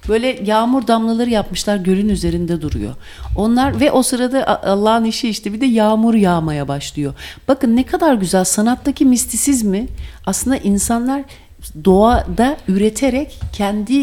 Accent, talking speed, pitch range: Turkish, 130 wpm, 175-255 Hz